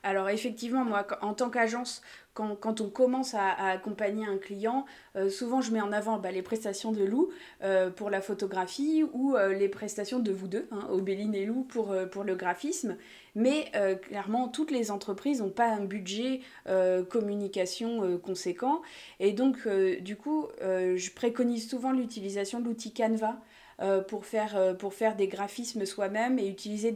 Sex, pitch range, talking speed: female, 195-240 Hz, 180 wpm